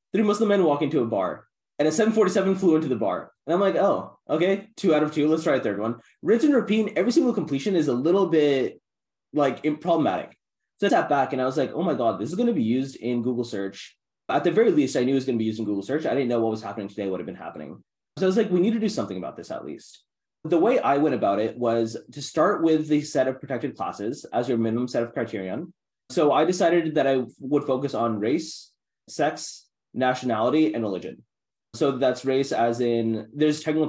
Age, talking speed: 20-39, 250 wpm